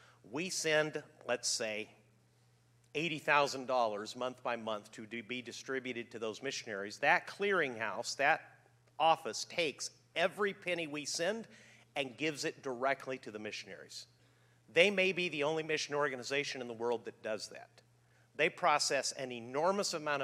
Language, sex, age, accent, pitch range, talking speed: English, male, 50-69, American, 120-165 Hz, 140 wpm